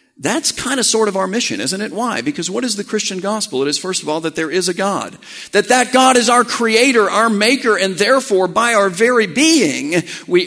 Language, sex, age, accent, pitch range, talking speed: English, male, 50-69, American, 150-225 Hz, 235 wpm